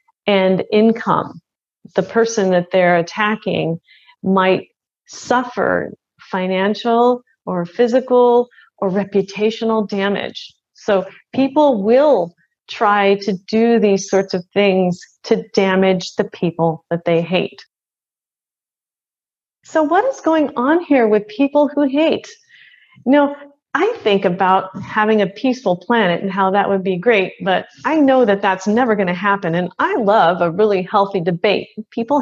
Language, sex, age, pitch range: English, female, 30-49, 195-265 Hz